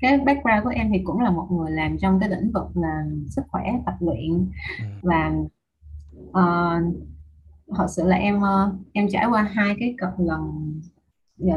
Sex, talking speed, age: female, 175 wpm, 20-39